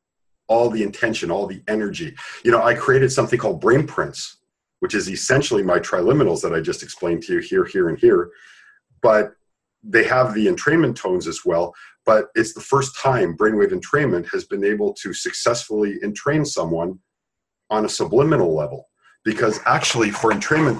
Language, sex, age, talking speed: English, male, 50-69, 170 wpm